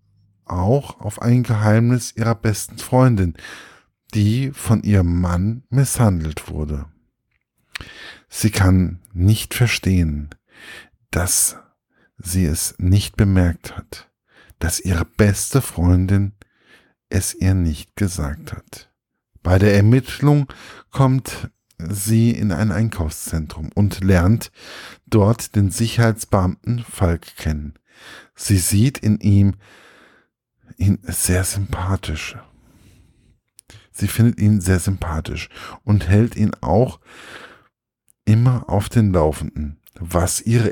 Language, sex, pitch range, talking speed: German, male, 90-110 Hz, 100 wpm